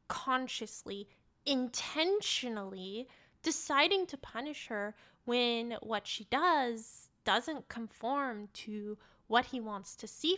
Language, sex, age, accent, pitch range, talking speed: English, female, 10-29, American, 215-290 Hz, 105 wpm